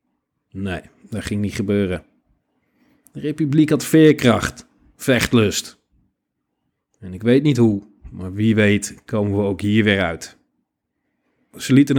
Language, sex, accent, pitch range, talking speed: Dutch, male, Dutch, 100-120 Hz, 130 wpm